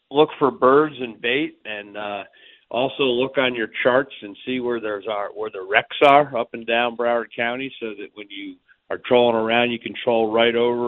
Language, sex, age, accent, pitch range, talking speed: English, male, 50-69, American, 110-130 Hz, 210 wpm